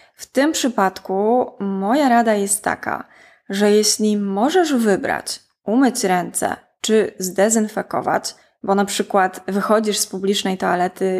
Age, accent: 20-39, native